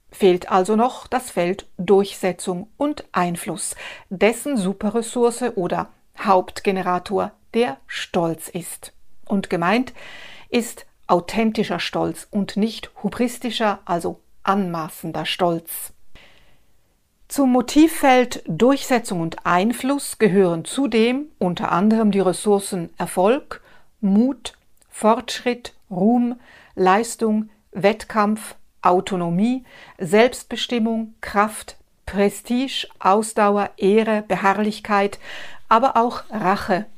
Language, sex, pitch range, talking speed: German, female, 190-240 Hz, 85 wpm